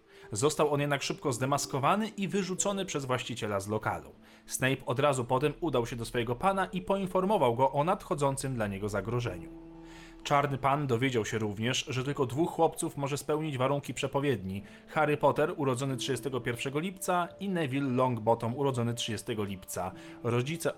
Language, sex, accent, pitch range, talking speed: Polish, male, native, 120-160 Hz, 155 wpm